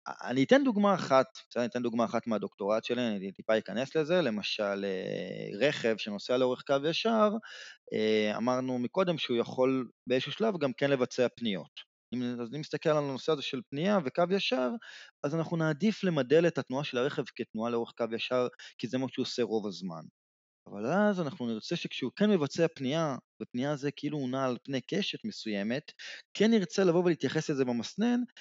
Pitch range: 120-180 Hz